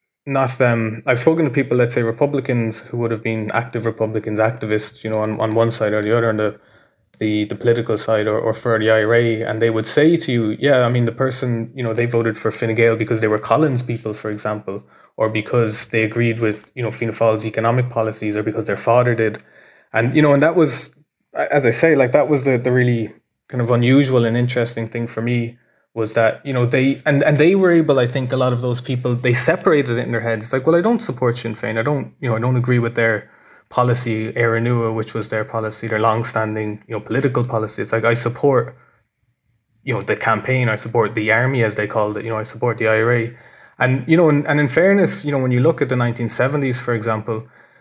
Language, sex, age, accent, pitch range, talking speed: English, male, 20-39, Irish, 110-130 Hz, 240 wpm